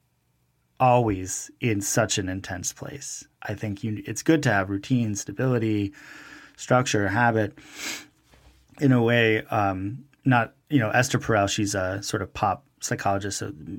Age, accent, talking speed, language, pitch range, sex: 30-49, American, 135 wpm, English, 95-120 Hz, male